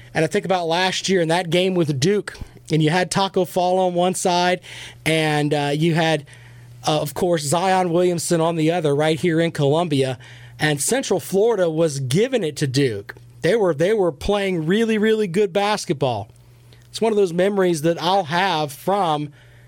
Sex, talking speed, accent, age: male, 185 wpm, American, 40-59